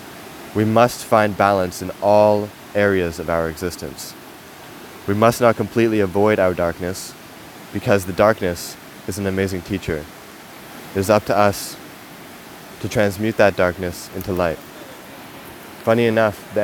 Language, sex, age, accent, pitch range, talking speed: English, male, 20-39, American, 90-100 Hz, 135 wpm